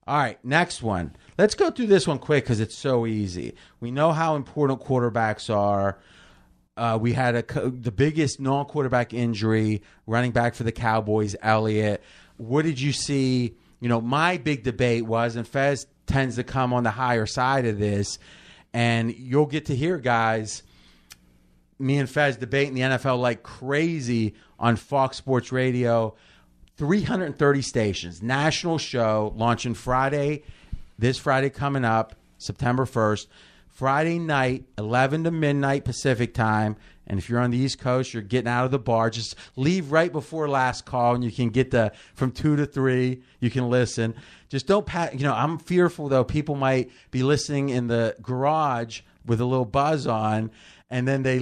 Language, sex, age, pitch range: English, male, 30-49, 115-140 Hz